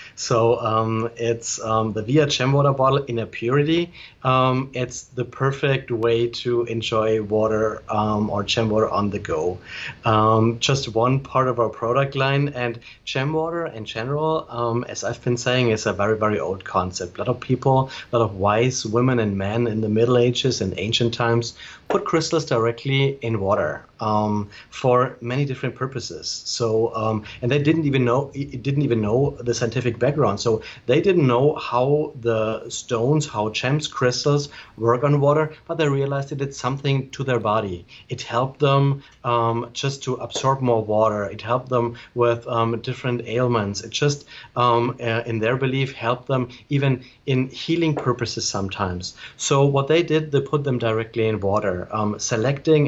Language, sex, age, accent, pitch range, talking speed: English, male, 30-49, German, 115-135 Hz, 180 wpm